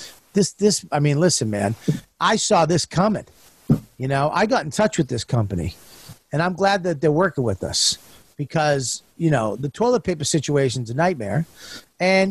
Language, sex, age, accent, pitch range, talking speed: English, male, 50-69, American, 150-215 Hz, 185 wpm